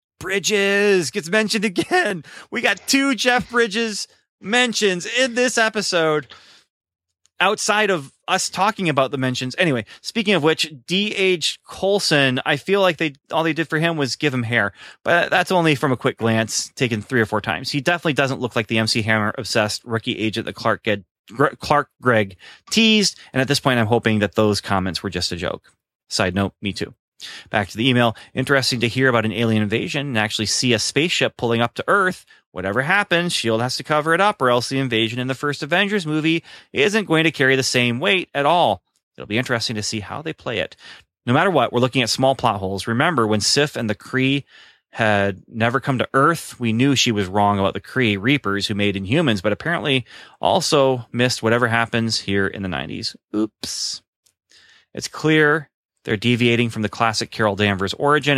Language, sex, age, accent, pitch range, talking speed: English, male, 30-49, American, 110-155 Hz, 200 wpm